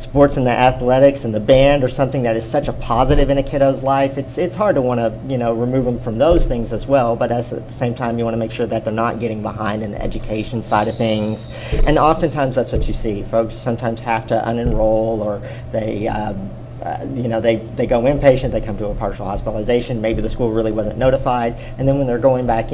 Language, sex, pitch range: English, male, 115-130 Hz